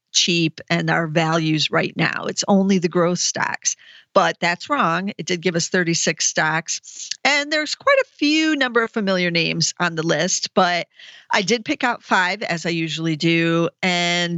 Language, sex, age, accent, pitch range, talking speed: English, female, 40-59, American, 170-210 Hz, 180 wpm